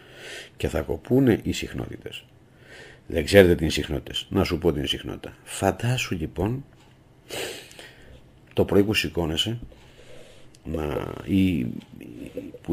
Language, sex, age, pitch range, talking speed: Greek, male, 50-69, 80-100 Hz, 115 wpm